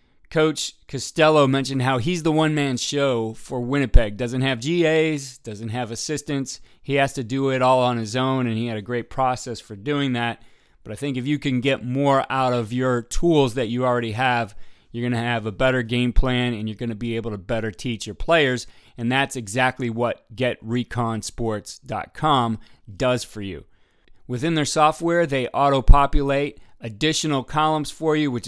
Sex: male